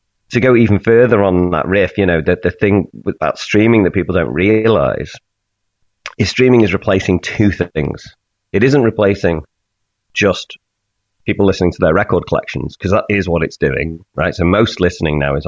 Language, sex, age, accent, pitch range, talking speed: English, male, 30-49, British, 80-100 Hz, 180 wpm